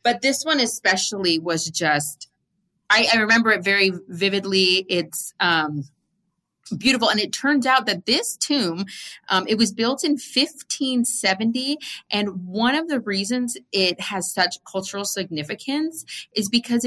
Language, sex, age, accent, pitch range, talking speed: English, female, 30-49, American, 175-235 Hz, 140 wpm